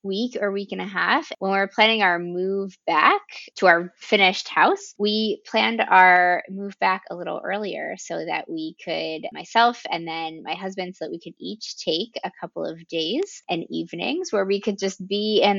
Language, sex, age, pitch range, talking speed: English, female, 20-39, 175-210 Hz, 195 wpm